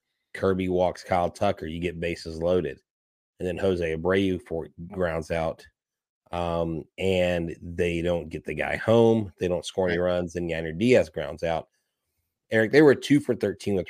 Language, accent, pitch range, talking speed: English, American, 85-100 Hz, 170 wpm